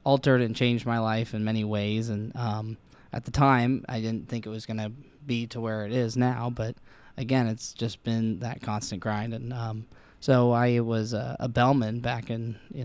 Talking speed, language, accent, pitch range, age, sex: 210 wpm, English, American, 110-125 Hz, 20-39, male